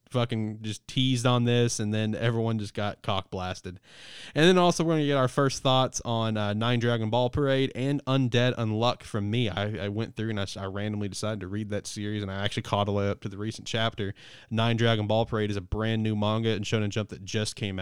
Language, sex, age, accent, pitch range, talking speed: English, male, 20-39, American, 105-125 Hz, 245 wpm